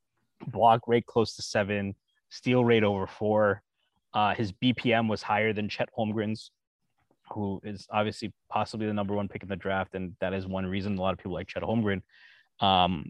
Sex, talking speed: male, 190 wpm